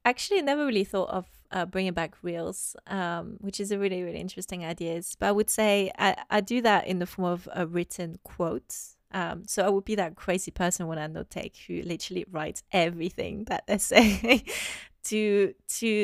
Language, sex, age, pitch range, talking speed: English, female, 20-39, 170-200 Hz, 200 wpm